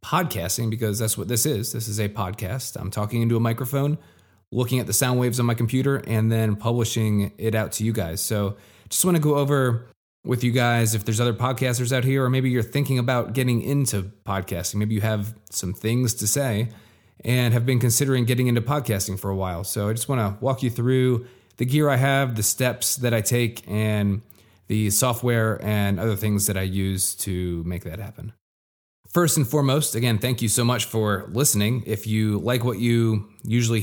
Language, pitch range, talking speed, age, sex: English, 105-125 Hz, 210 wpm, 20-39, male